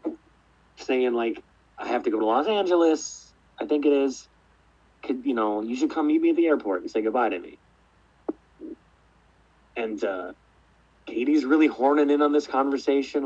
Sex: male